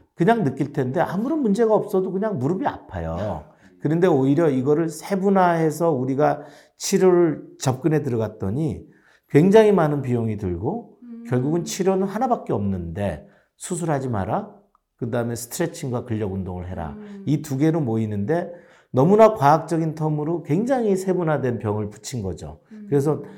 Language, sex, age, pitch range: Korean, male, 50-69, 125-180 Hz